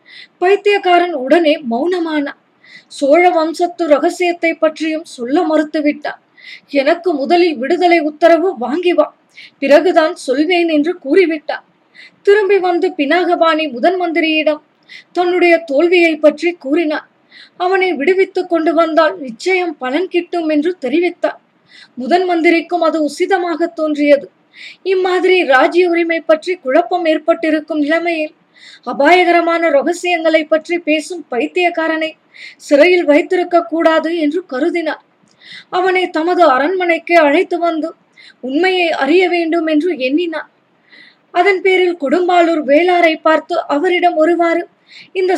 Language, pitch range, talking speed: Tamil, 310-350 Hz, 100 wpm